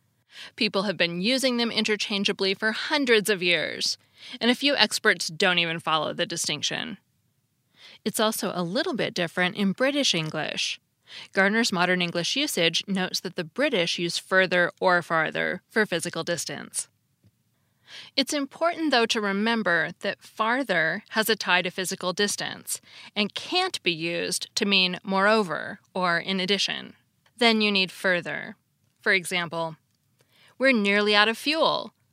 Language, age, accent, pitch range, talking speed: English, 20-39, American, 175-240 Hz, 145 wpm